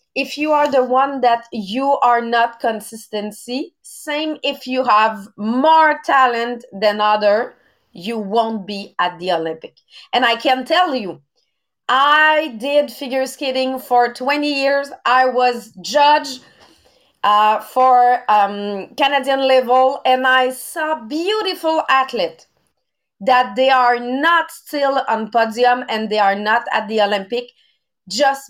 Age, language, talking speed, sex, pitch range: 30-49, English, 135 wpm, female, 220-280 Hz